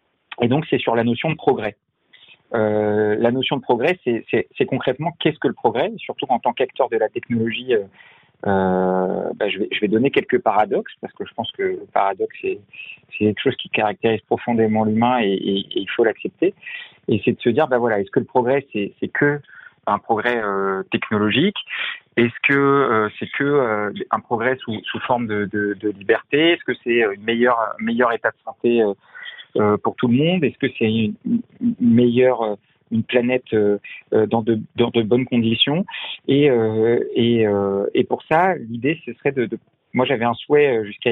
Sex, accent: male, French